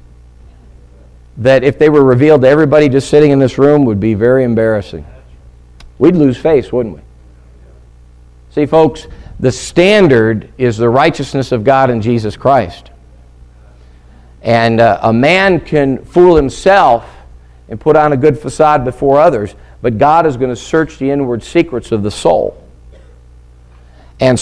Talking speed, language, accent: 150 wpm, English, American